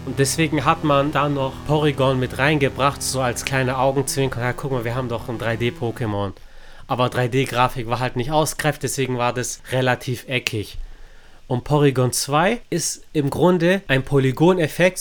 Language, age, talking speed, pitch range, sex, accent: German, 30-49, 160 wpm, 115-145 Hz, male, German